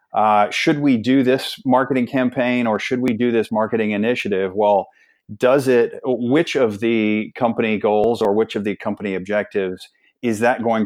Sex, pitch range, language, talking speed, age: male, 100-115 Hz, English, 170 wpm, 30-49